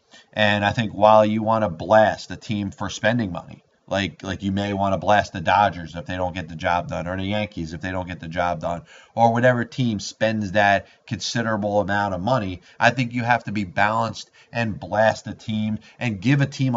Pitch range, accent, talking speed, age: 95-115 Hz, American, 225 wpm, 30-49